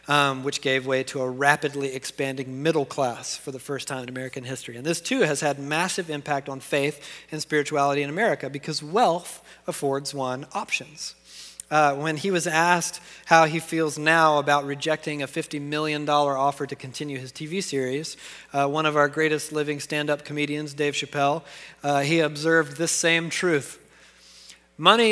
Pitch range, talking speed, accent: 140-170 Hz, 170 wpm, American